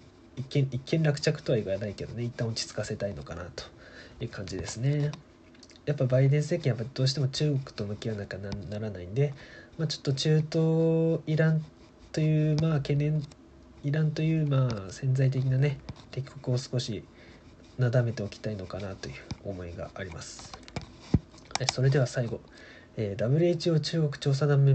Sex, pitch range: male, 115-145 Hz